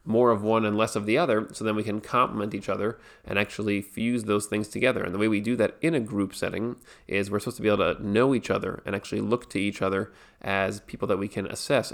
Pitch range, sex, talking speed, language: 100-110 Hz, male, 265 wpm, English